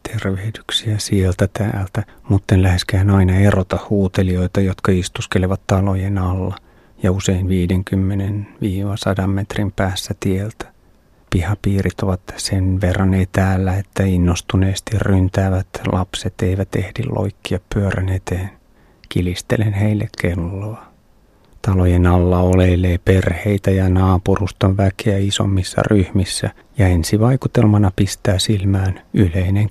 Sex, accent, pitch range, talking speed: male, native, 95-105 Hz, 100 wpm